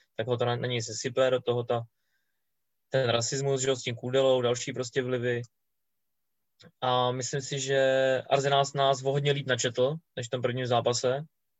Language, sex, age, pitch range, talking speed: Czech, male, 20-39, 120-130 Hz, 155 wpm